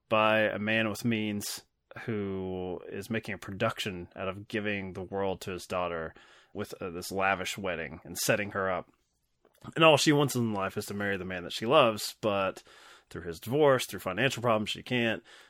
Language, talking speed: English, 195 wpm